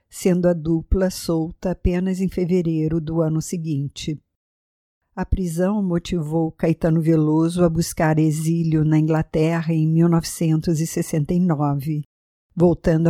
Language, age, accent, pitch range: English, 50-69, Brazilian, 155-175 Hz